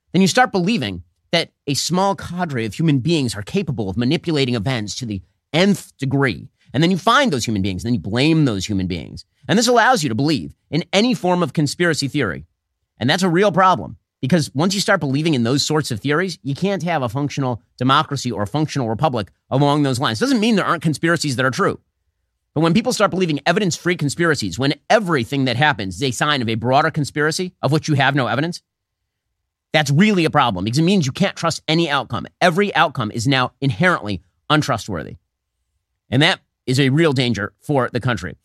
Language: English